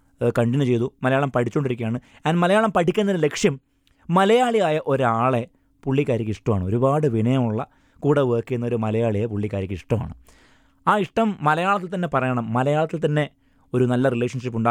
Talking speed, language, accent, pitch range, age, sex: 120 wpm, Malayalam, native, 110-155 Hz, 20-39, male